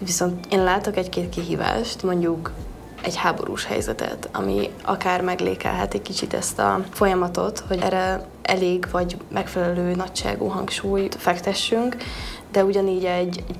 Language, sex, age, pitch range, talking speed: Hungarian, female, 20-39, 180-195 Hz, 125 wpm